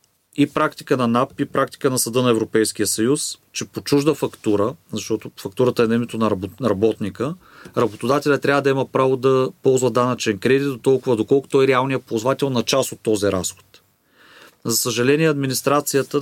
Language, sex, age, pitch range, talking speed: Bulgarian, male, 40-59, 120-140 Hz, 165 wpm